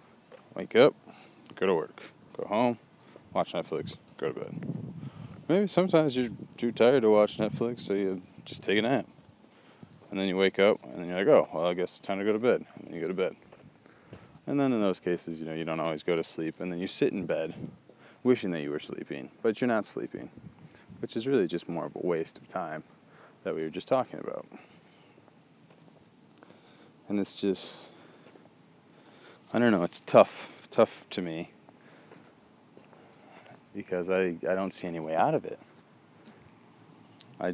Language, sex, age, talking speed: English, male, 20-39, 185 wpm